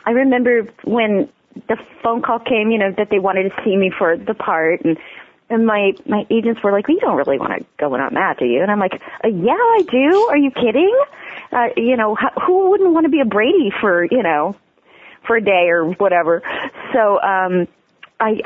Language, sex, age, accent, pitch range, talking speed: English, female, 30-49, American, 180-245 Hz, 220 wpm